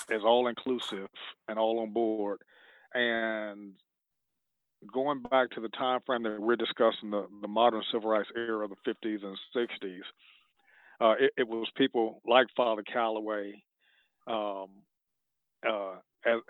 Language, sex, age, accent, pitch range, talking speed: English, male, 40-59, American, 110-120 Hz, 140 wpm